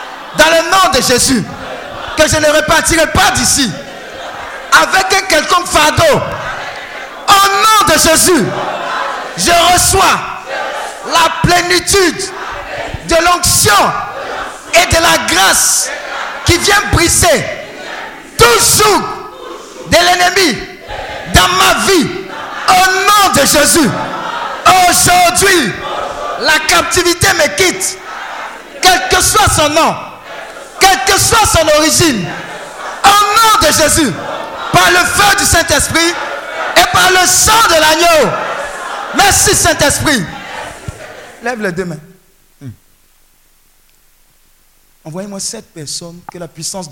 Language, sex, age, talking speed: French, male, 50-69, 110 wpm